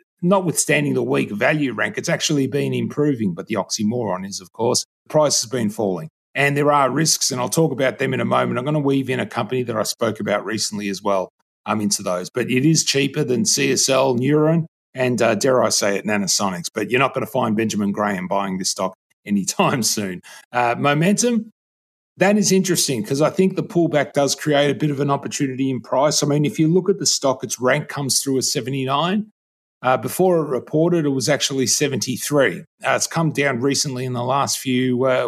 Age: 30-49